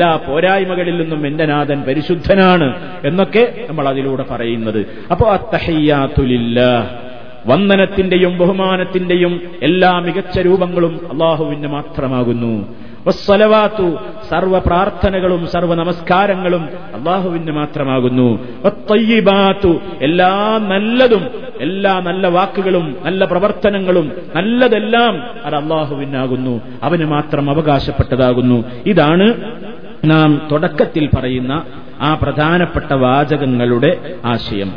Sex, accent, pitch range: male, native, 145-195 Hz